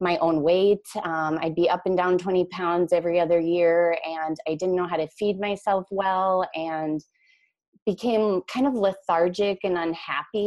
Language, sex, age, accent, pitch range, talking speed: English, female, 20-39, American, 160-195 Hz, 170 wpm